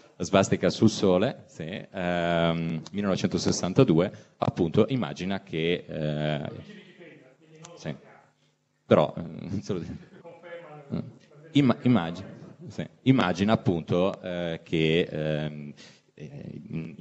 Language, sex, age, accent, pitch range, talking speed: Italian, male, 30-49, native, 75-85 Hz, 70 wpm